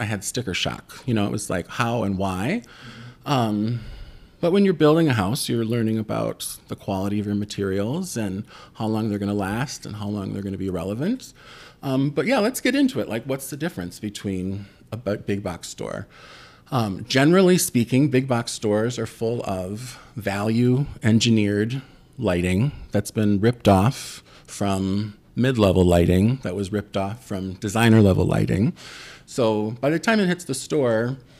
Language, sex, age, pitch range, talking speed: English, male, 40-59, 100-130 Hz, 175 wpm